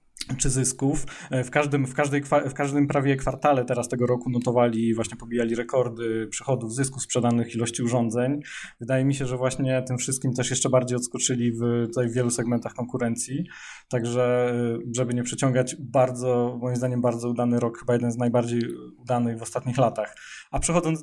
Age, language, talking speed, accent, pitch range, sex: 20-39, Polish, 170 wpm, native, 120-140 Hz, male